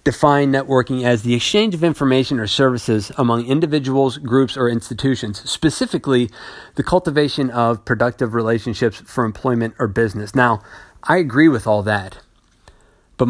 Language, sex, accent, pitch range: English, male, American, 115-135 Hz